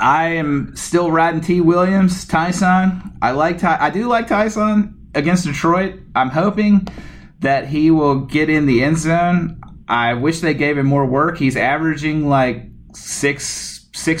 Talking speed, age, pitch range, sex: 155 wpm, 30-49, 120-165 Hz, male